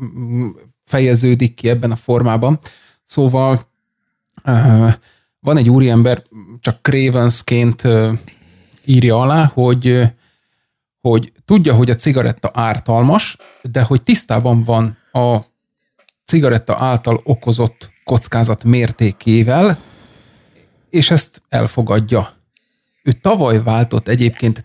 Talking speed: 90 wpm